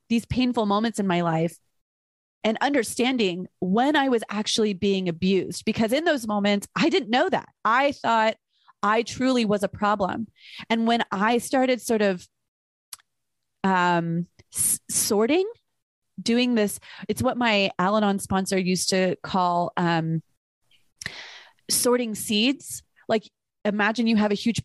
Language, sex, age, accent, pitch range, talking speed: English, female, 30-49, American, 185-230 Hz, 135 wpm